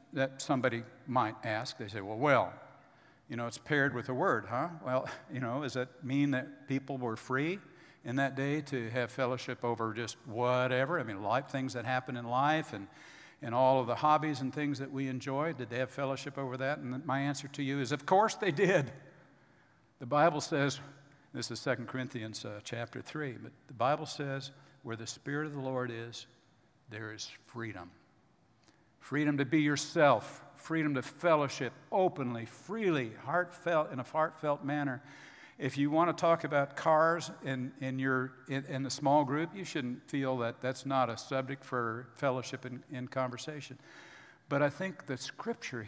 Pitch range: 120-145 Hz